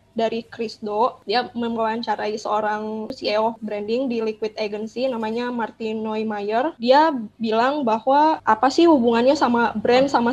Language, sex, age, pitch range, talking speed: English, female, 10-29, 225-265 Hz, 135 wpm